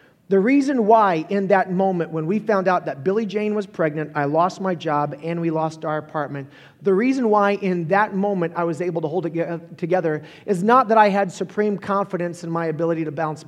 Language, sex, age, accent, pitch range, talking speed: English, male, 40-59, American, 155-205 Hz, 220 wpm